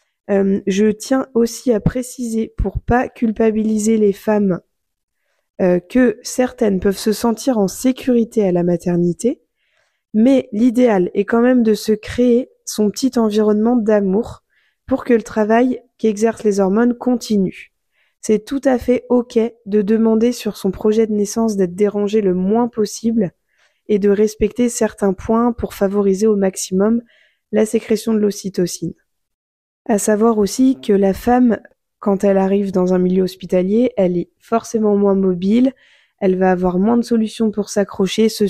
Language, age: French, 20-39